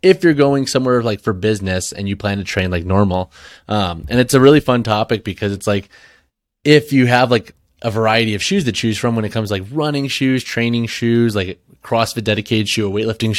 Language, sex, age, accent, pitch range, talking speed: English, male, 20-39, American, 100-120 Hz, 220 wpm